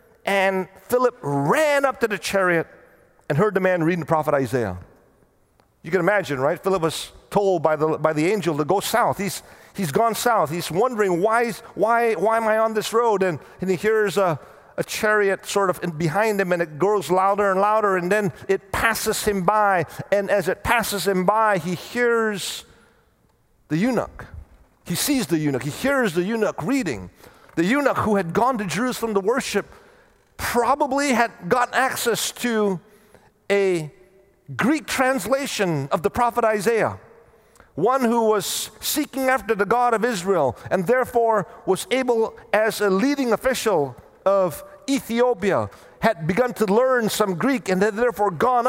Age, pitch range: 50-69, 185-235 Hz